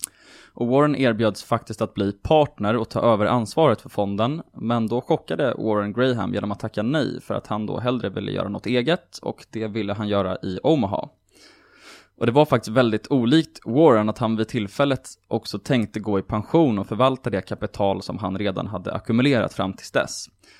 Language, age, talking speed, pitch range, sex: Swedish, 20-39, 190 wpm, 105-130 Hz, male